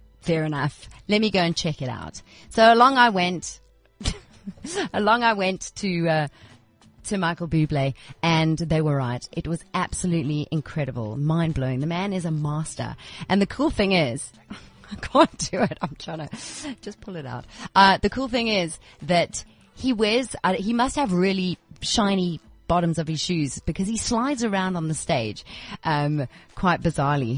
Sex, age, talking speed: female, 30-49, 175 wpm